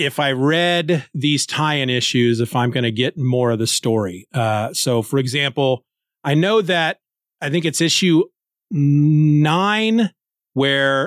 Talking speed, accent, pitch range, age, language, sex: 150 wpm, American, 135-185 Hz, 40-59, English, male